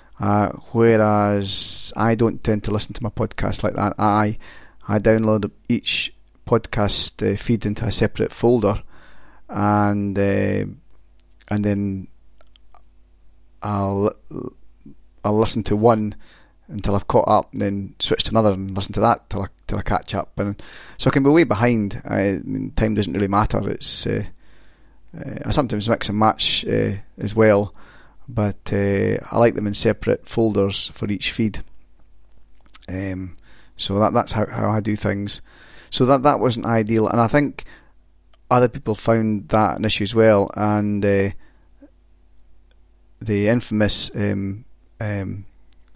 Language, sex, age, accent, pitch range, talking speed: English, male, 30-49, British, 100-110 Hz, 155 wpm